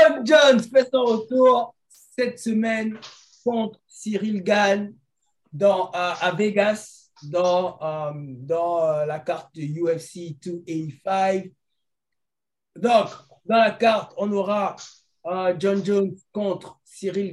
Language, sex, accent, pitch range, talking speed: French, male, French, 150-190 Hz, 120 wpm